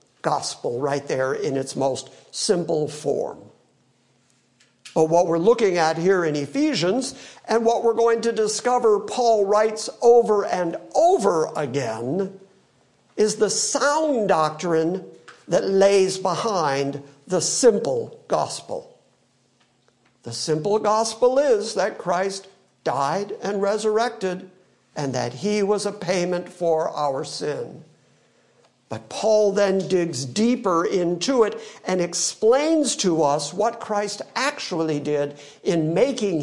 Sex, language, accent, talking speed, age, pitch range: male, English, American, 120 wpm, 50-69, 150-215 Hz